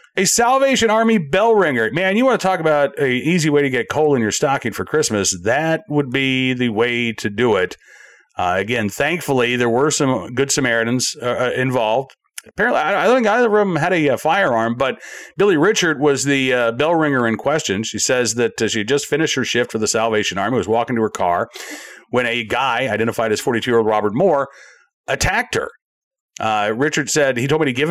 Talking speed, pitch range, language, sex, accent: 215 wpm, 120-160 Hz, English, male, American